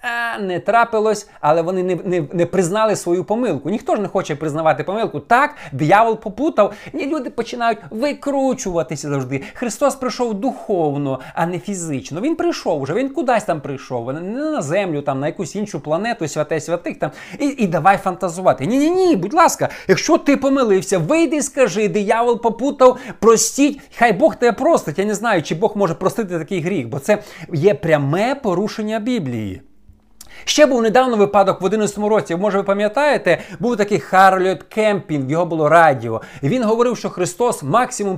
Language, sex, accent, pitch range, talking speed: Ukrainian, male, native, 165-235 Hz, 165 wpm